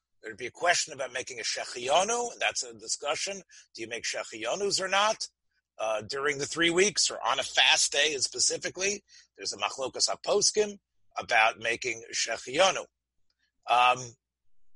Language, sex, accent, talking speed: English, male, American, 150 wpm